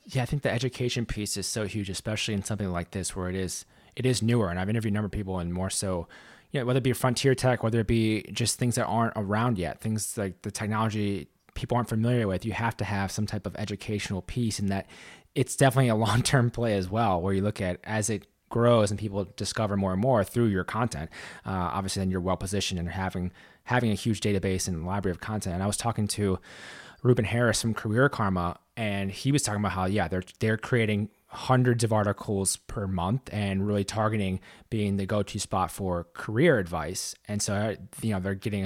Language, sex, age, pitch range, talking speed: English, male, 20-39, 95-115 Hz, 225 wpm